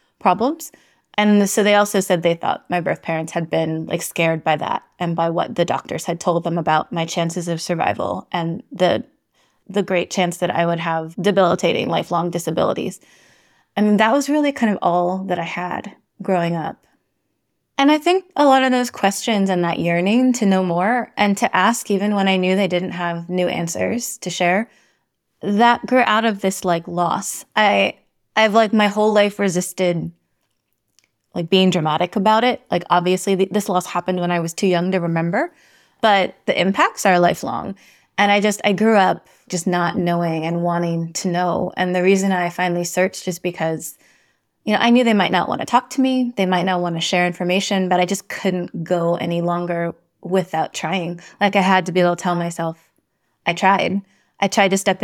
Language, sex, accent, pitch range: English, female, American, 170-205 Hz